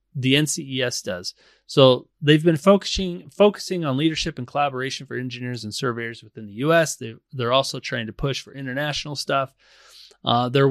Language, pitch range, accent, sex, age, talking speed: English, 125-155 Hz, American, male, 30-49, 170 wpm